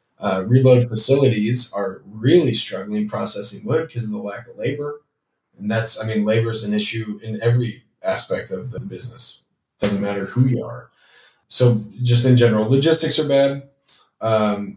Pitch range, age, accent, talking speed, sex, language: 110-125 Hz, 20-39, American, 165 wpm, male, English